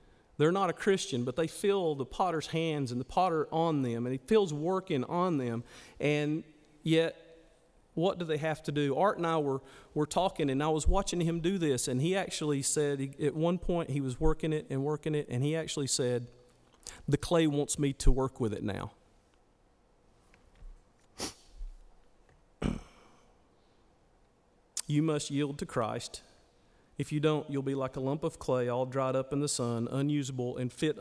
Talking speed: 180 wpm